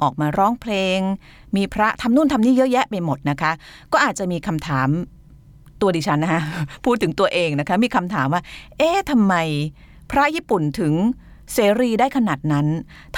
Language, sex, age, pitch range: Thai, female, 30-49, 150-225 Hz